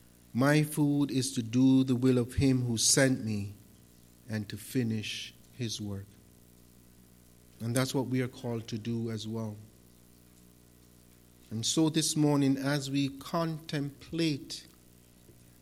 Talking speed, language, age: 130 wpm, English, 50-69